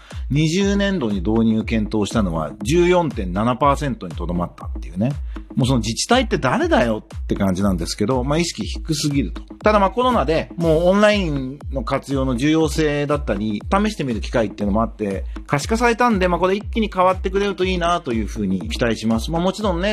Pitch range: 115-190 Hz